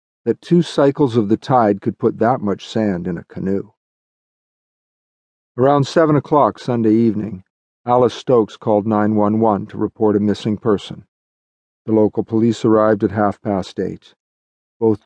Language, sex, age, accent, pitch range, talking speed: English, male, 50-69, American, 100-120 Hz, 145 wpm